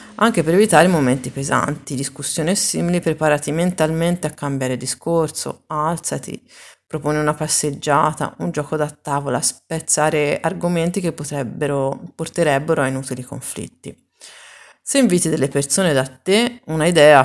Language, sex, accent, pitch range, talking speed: Italian, female, native, 135-165 Hz, 120 wpm